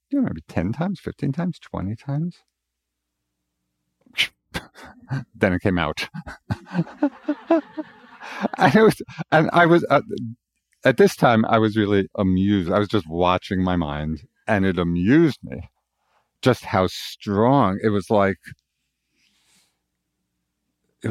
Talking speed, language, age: 120 wpm, English, 50-69